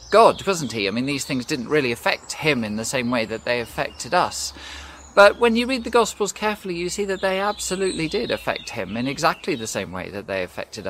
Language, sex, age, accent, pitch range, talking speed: English, male, 40-59, British, 110-165 Hz, 230 wpm